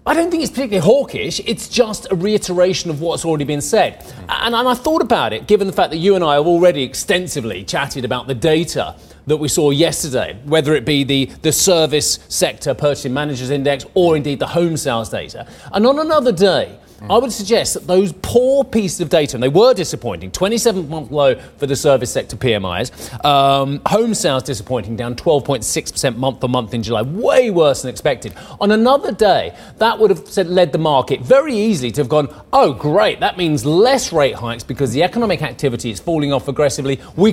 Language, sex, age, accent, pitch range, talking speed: English, male, 30-49, British, 135-200 Hz, 200 wpm